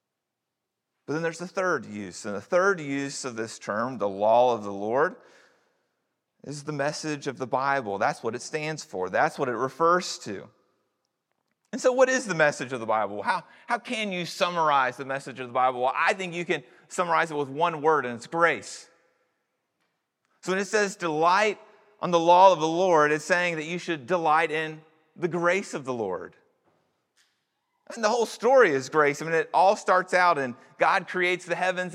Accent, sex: American, male